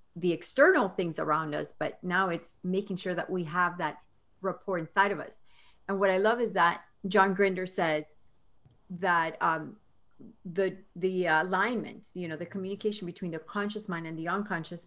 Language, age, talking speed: English, 40-59, 175 wpm